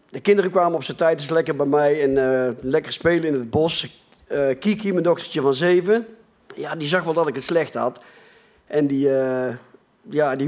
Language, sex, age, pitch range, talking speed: Dutch, male, 40-59, 140-190 Hz, 210 wpm